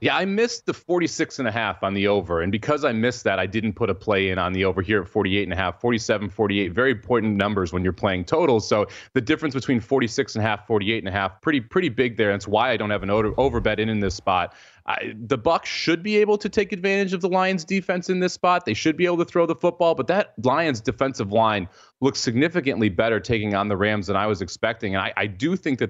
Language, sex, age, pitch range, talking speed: English, male, 30-49, 105-140 Hz, 260 wpm